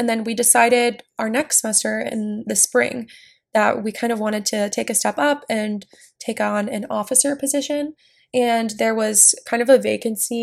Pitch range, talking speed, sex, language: 205-245 Hz, 190 wpm, female, English